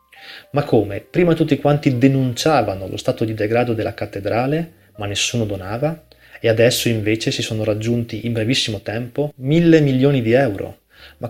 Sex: male